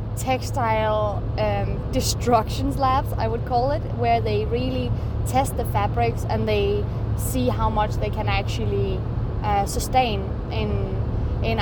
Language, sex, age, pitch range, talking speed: English, female, 20-39, 105-115 Hz, 135 wpm